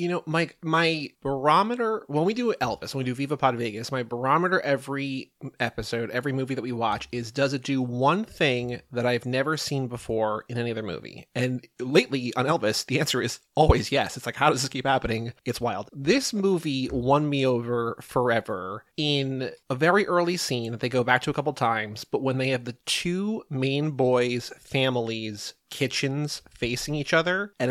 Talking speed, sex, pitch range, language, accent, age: 195 wpm, male, 125-160 Hz, English, American, 30-49